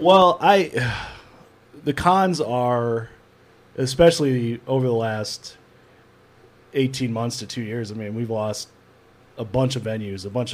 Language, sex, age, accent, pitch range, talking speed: English, male, 30-49, American, 105-130 Hz, 135 wpm